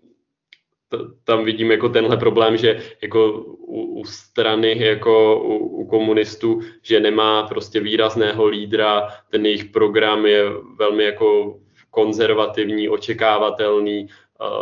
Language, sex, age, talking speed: Czech, male, 20-39, 115 wpm